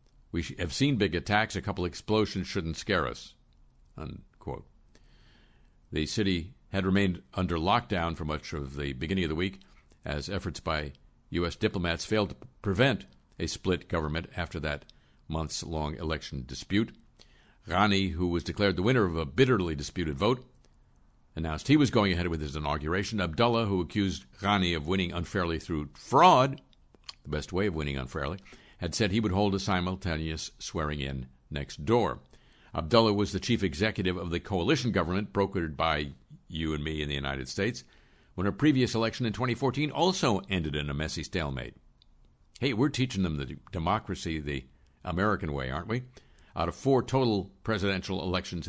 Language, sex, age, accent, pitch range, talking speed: English, male, 60-79, American, 75-105 Hz, 165 wpm